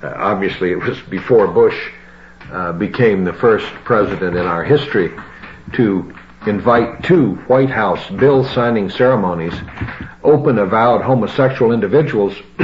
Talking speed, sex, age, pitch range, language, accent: 115 wpm, male, 60-79, 90-125 Hz, English, American